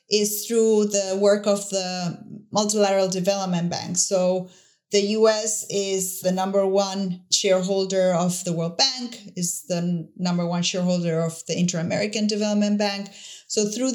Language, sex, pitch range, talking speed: English, female, 180-215 Hz, 140 wpm